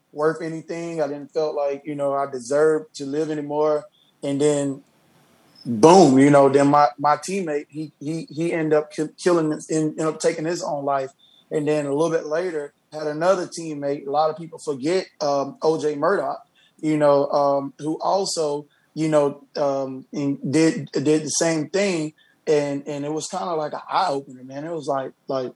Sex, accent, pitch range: male, American, 140-160 Hz